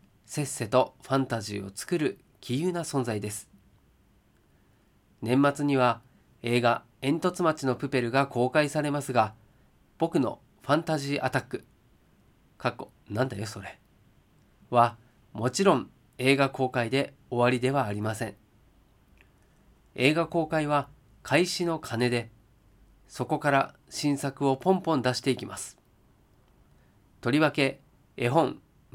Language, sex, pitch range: Japanese, male, 115-155 Hz